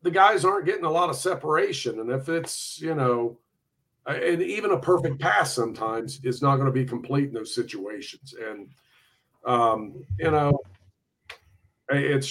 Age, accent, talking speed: 50-69, American, 160 wpm